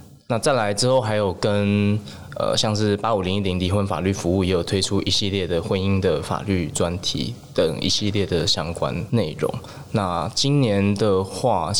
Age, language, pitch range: 20-39, Chinese, 95-110 Hz